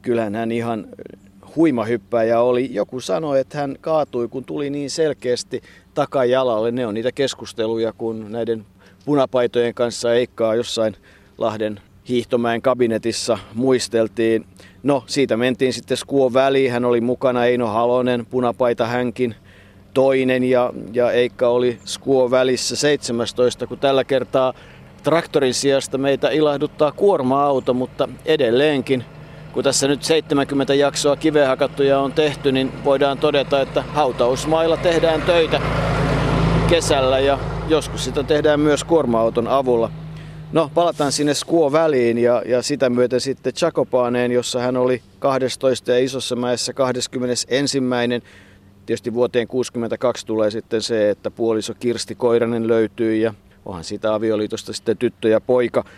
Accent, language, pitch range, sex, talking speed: native, Finnish, 115-140 Hz, male, 130 wpm